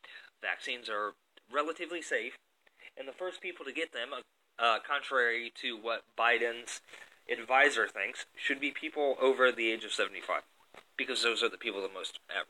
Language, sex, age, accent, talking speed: English, male, 30-49, American, 165 wpm